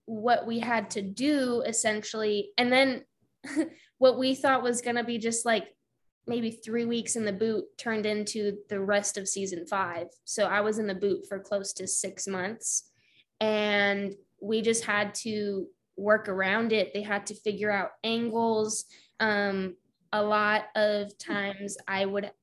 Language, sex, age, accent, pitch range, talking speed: English, female, 10-29, American, 200-235 Hz, 165 wpm